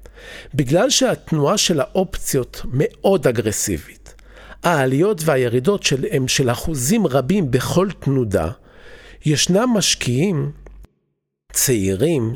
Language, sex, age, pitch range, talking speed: Hebrew, male, 50-69, 125-185 Hz, 85 wpm